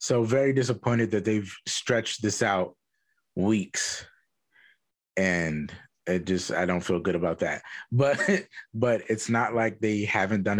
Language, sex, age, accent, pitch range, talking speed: English, male, 20-39, American, 100-120 Hz, 145 wpm